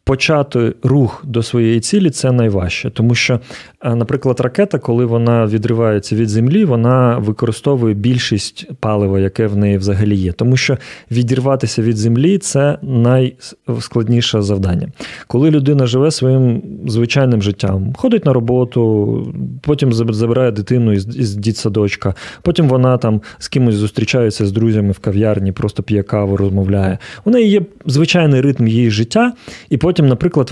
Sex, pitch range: male, 105-130 Hz